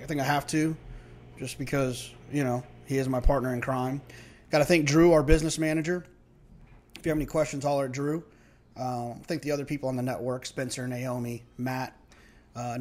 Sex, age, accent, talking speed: male, 30-49, American, 195 wpm